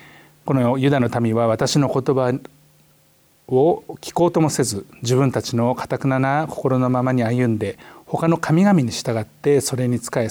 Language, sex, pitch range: Japanese, male, 120-150 Hz